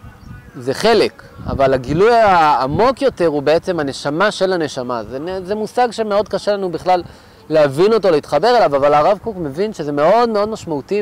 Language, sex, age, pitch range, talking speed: Hebrew, male, 30-49, 150-205 Hz, 165 wpm